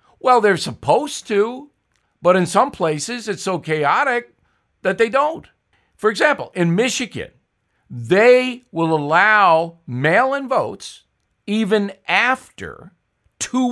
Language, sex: English, male